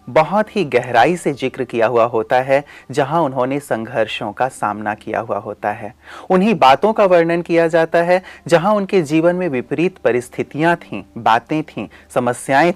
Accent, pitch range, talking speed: native, 120-175 Hz, 165 wpm